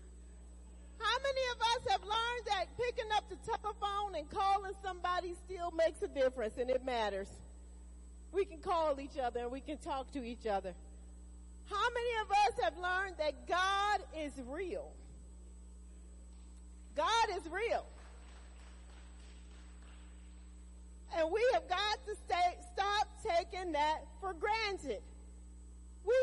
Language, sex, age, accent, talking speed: English, female, 40-59, American, 130 wpm